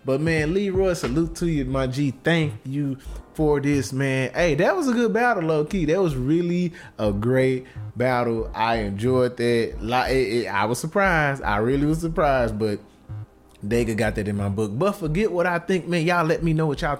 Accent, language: American, English